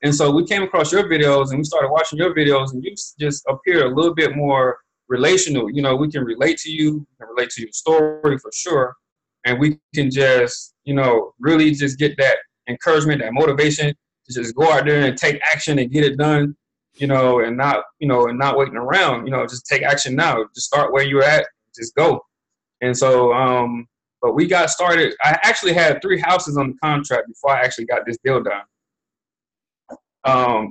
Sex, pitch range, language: male, 135-160 Hz, English